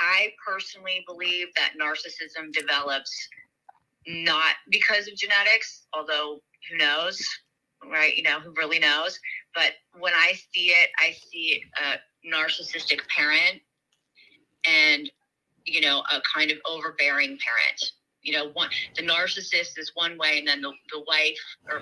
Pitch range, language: 150-180 Hz, English